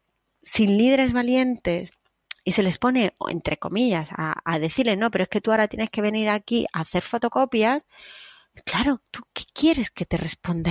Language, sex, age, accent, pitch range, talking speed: Spanish, female, 30-49, Spanish, 175-245 Hz, 180 wpm